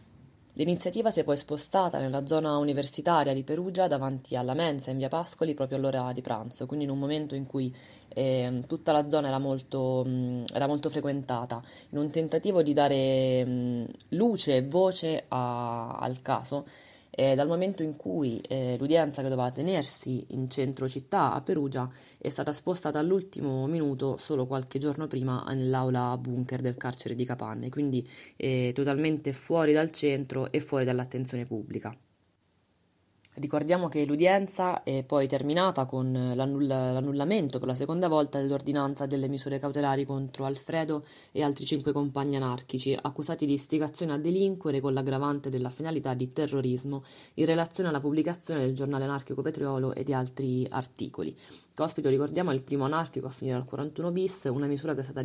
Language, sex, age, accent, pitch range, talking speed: Italian, female, 20-39, native, 130-150 Hz, 160 wpm